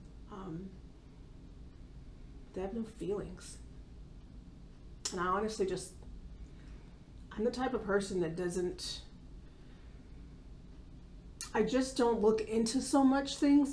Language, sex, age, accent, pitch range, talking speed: English, female, 30-49, American, 160-205 Hz, 105 wpm